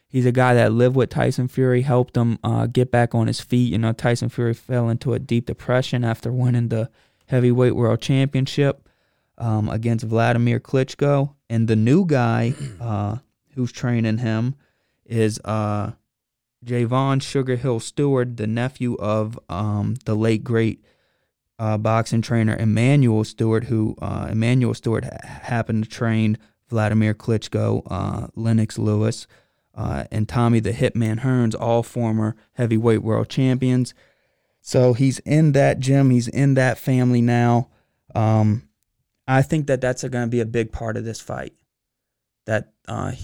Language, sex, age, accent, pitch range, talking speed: English, male, 20-39, American, 110-125 Hz, 150 wpm